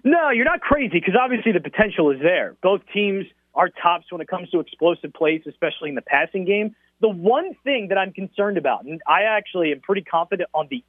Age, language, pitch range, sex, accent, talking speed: 30-49, English, 170-215 Hz, male, American, 220 wpm